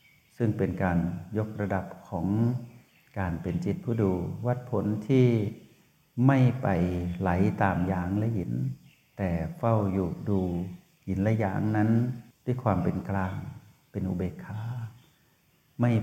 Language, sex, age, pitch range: Thai, male, 60-79, 95-120 Hz